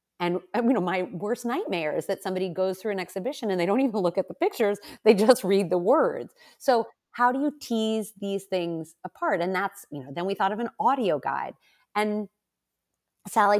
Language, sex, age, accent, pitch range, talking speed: English, female, 30-49, American, 165-230 Hz, 205 wpm